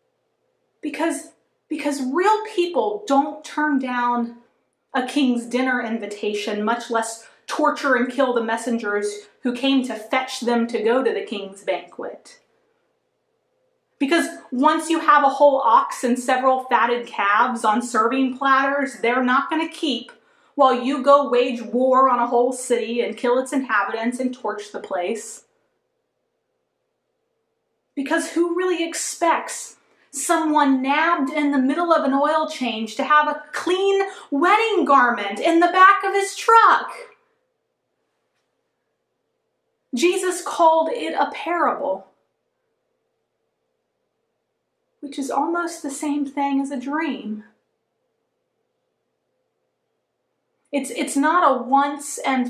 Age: 30-49